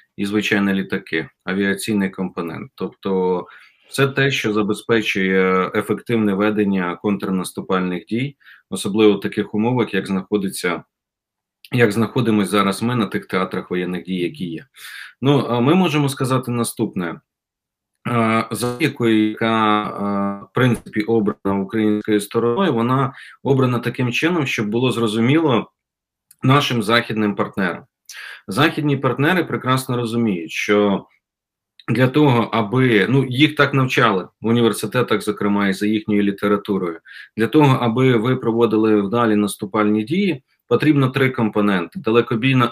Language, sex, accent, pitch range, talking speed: Ukrainian, male, native, 100-125 Hz, 115 wpm